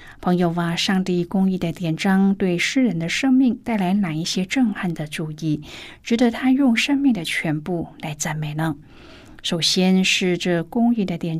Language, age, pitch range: Chinese, 50-69, 165-230 Hz